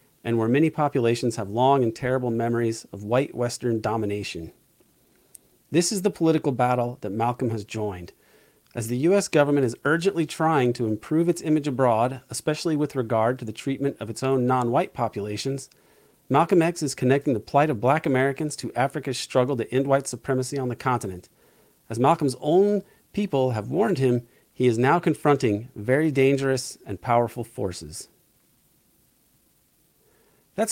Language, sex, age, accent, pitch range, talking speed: English, male, 40-59, American, 120-150 Hz, 160 wpm